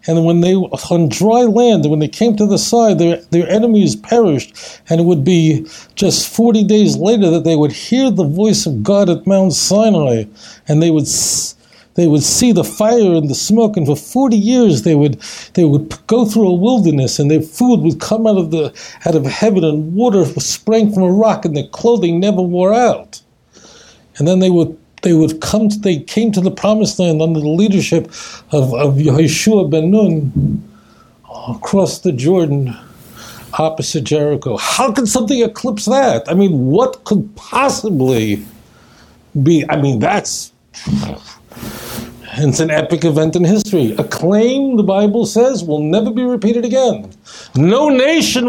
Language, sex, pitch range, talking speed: English, male, 155-220 Hz, 175 wpm